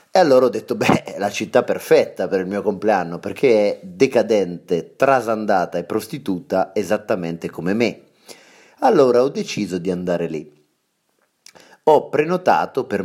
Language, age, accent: Italian, 30-49, native